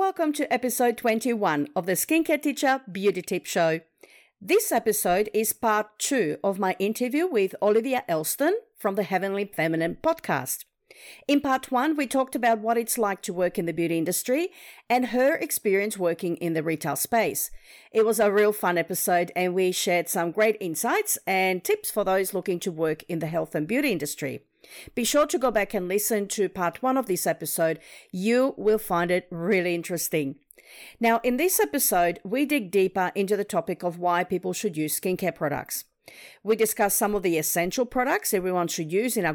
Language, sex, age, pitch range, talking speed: English, female, 50-69, 175-235 Hz, 190 wpm